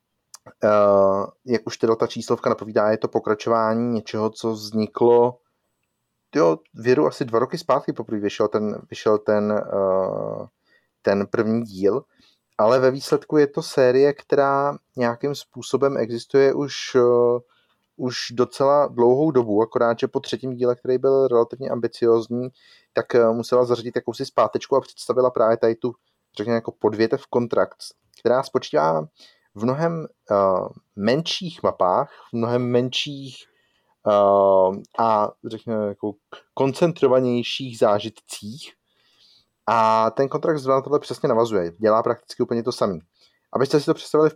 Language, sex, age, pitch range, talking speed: Czech, male, 30-49, 110-130 Hz, 135 wpm